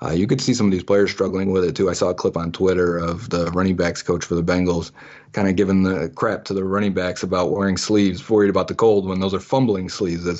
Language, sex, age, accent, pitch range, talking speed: English, male, 30-49, American, 95-115 Hz, 275 wpm